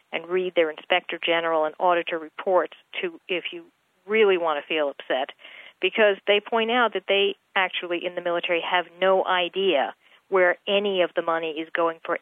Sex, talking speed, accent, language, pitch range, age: female, 180 wpm, American, English, 170-200 Hz, 50-69